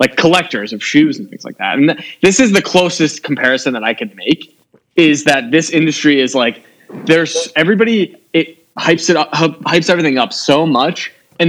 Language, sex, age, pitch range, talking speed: English, male, 20-39, 130-175 Hz, 190 wpm